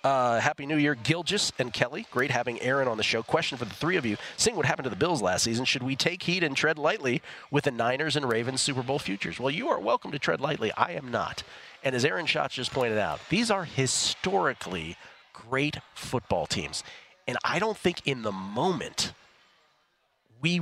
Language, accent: English, American